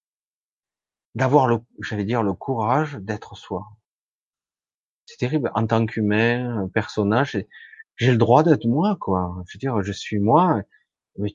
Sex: male